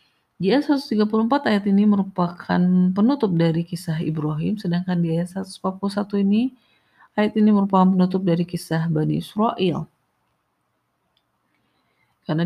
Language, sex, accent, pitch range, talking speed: Indonesian, female, native, 155-205 Hz, 115 wpm